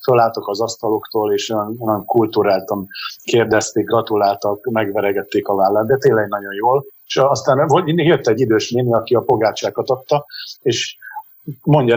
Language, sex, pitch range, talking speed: Hungarian, male, 105-120 Hz, 140 wpm